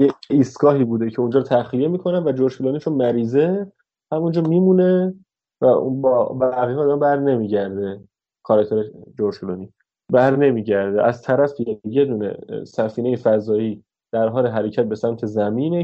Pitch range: 120-155 Hz